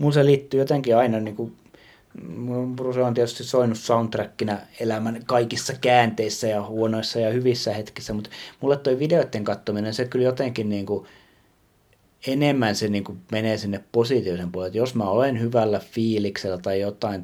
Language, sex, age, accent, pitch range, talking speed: Finnish, male, 30-49, native, 95-120 Hz, 160 wpm